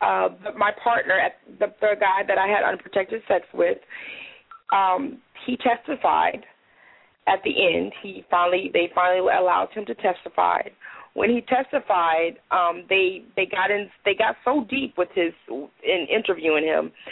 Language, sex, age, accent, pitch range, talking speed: English, female, 30-49, American, 180-245 Hz, 145 wpm